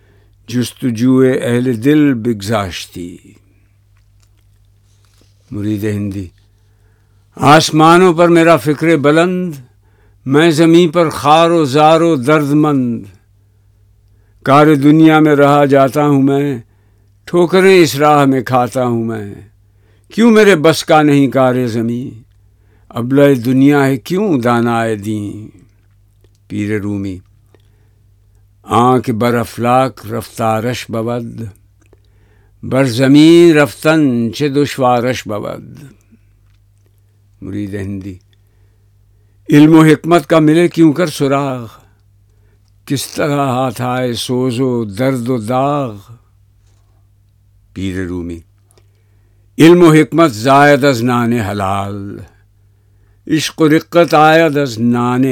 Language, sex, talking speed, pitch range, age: Urdu, male, 105 wpm, 100-140 Hz, 60-79